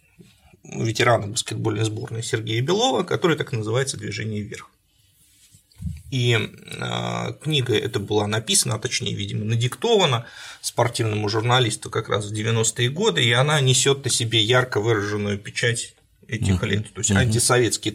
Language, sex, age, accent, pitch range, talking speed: Russian, male, 30-49, native, 105-120 Hz, 130 wpm